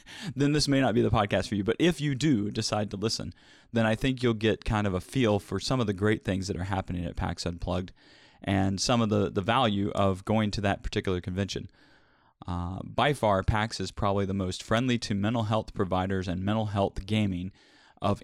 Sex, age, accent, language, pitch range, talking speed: male, 30-49, American, English, 95-115 Hz, 220 wpm